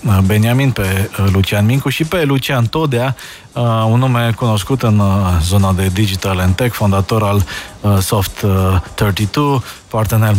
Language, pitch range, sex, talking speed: Romanian, 100-125 Hz, male, 120 wpm